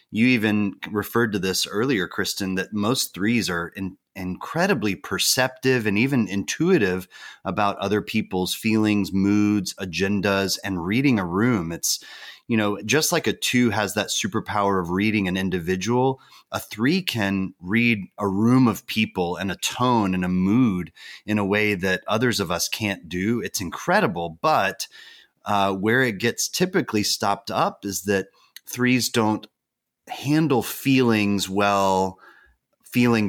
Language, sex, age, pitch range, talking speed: English, male, 30-49, 95-120 Hz, 145 wpm